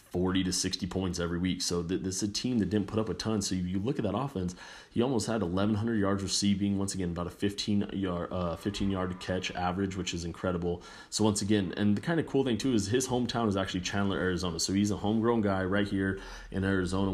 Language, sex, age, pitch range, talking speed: English, male, 30-49, 90-100 Hz, 250 wpm